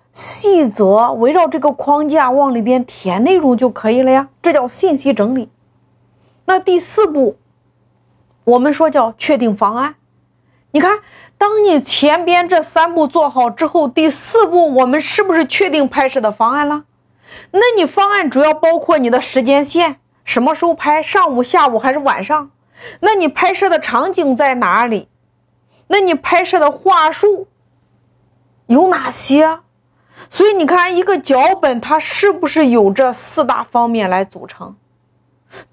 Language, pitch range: Chinese, 245-340 Hz